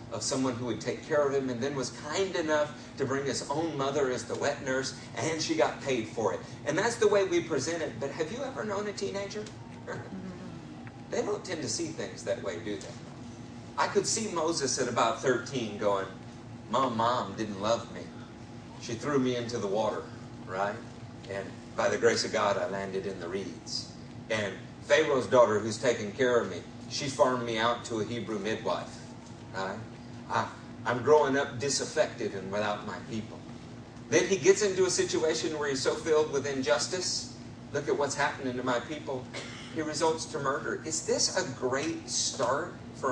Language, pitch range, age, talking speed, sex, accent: English, 120-150 Hz, 50-69, 190 wpm, male, American